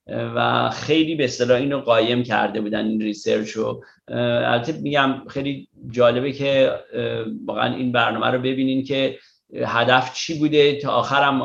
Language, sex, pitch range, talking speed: Persian, male, 115-130 Hz, 135 wpm